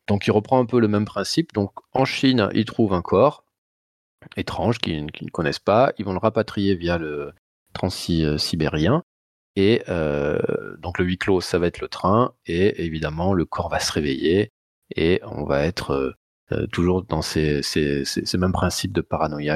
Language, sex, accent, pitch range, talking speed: French, male, French, 85-110 Hz, 180 wpm